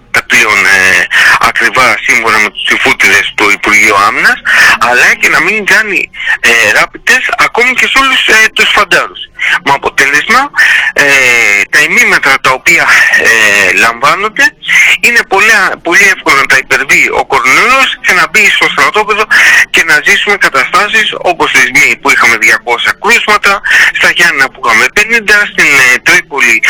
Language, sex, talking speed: Greek, male, 140 wpm